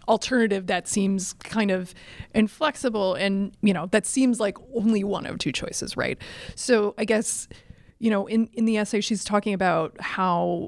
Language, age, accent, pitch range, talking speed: English, 30-49, American, 185-220 Hz, 175 wpm